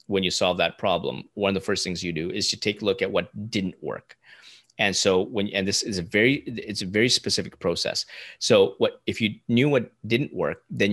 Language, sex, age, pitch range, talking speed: English, male, 30-49, 90-110 Hz, 235 wpm